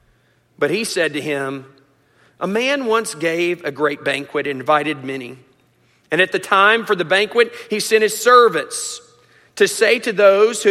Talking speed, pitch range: 170 wpm, 150-225 Hz